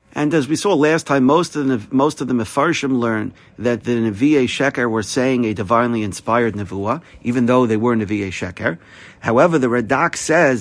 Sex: male